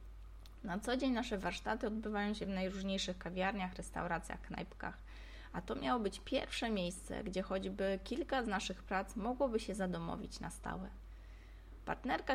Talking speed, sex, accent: 145 wpm, female, native